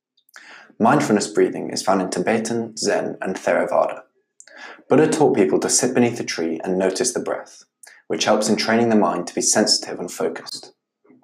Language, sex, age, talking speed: English, male, 20-39, 170 wpm